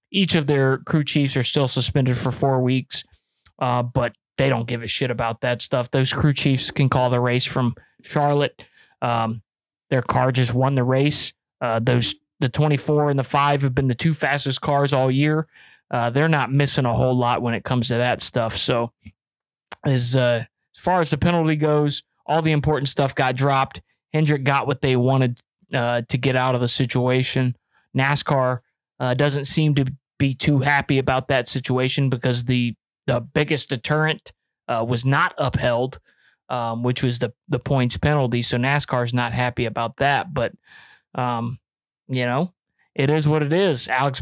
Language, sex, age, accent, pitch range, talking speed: English, male, 20-39, American, 125-145 Hz, 185 wpm